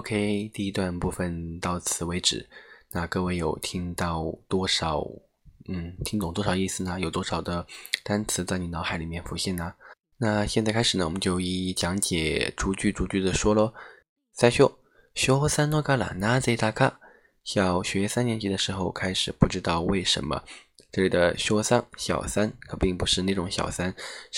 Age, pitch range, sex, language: 20-39, 90-110 Hz, male, Chinese